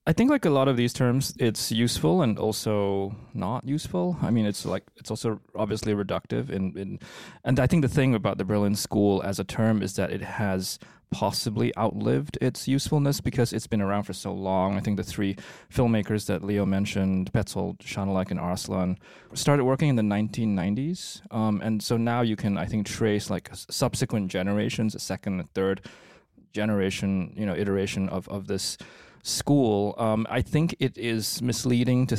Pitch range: 95-125 Hz